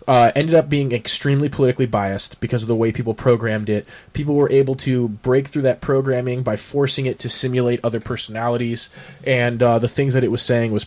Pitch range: 110-135 Hz